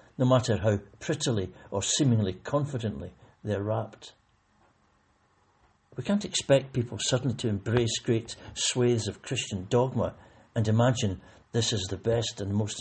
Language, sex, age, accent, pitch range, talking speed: English, male, 60-79, British, 105-130 Hz, 135 wpm